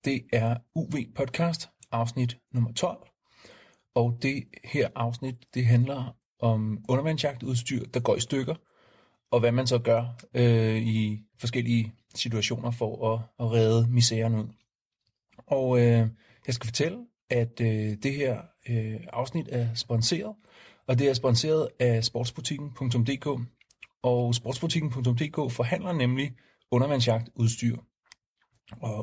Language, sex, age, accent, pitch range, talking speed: Danish, male, 40-59, native, 115-130 Hz, 120 wpm